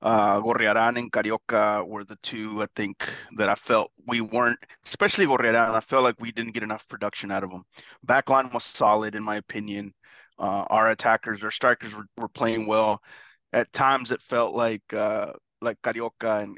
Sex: male